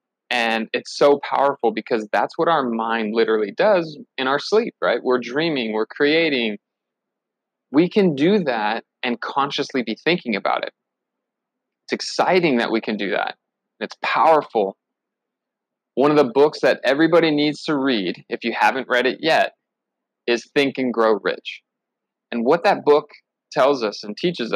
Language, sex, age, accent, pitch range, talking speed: English, male, 30-49, American, 115-145 Hz, 160 wpm